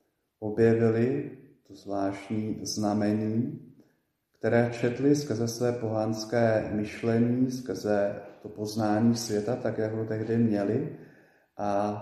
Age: 40-59